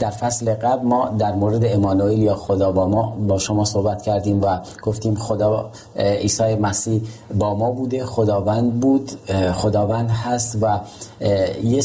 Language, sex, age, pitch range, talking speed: Persian, male, 40-59, 100-120 Hz, 145 wpm